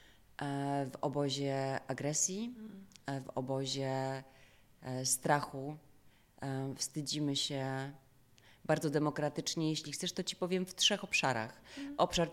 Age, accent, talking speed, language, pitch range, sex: 30-49, native, 90 wpm, Polish, 135-150 Hz, female